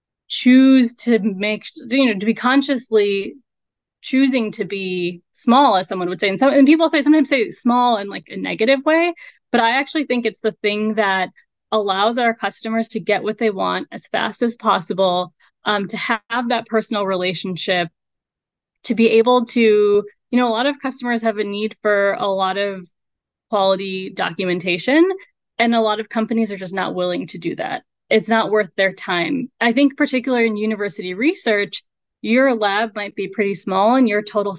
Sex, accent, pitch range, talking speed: female, American, 195-240 Hz, 185 wpm